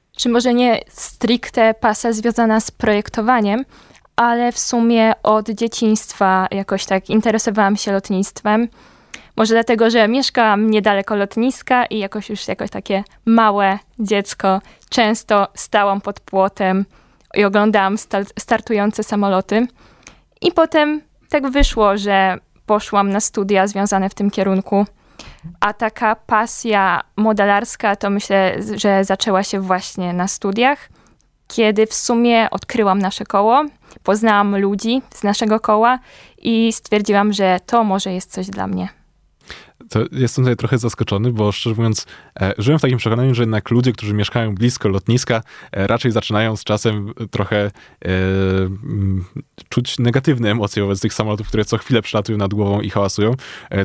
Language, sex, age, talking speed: Polish, female, 20-39, 140 wpm